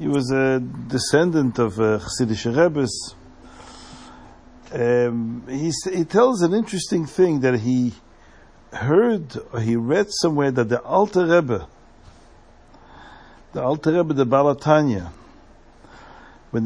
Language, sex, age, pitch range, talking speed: English, male, 60-79, 120-155 Hz, 110 wpm